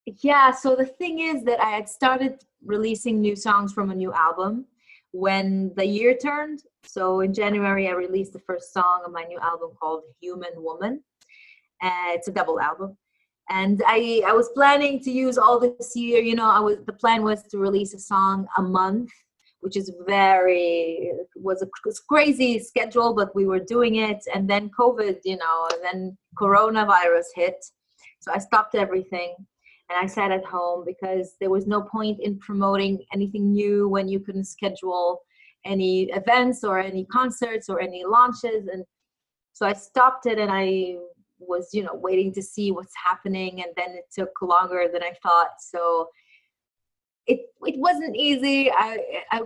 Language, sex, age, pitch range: English, female, 30-49, 185-240 Hz